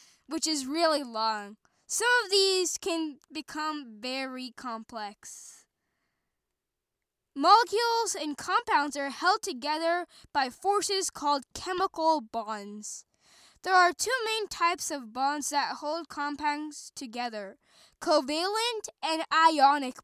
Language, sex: English, female